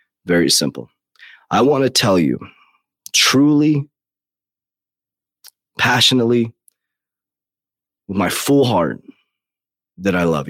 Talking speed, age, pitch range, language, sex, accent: 90 wpm, 30-49, 90-115 Hz, English, male, American